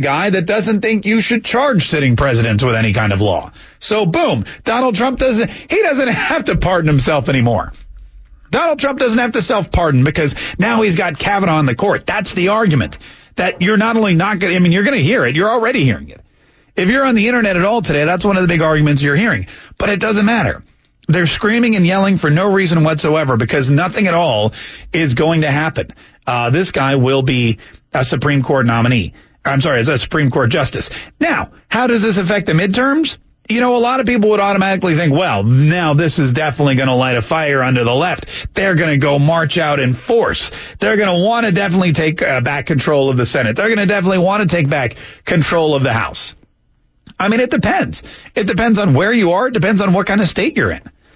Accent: American